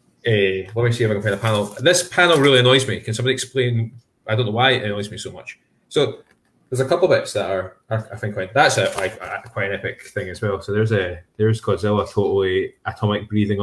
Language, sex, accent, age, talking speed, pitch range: English, male, British, 20-39, 250 wpm, 105-125 Hz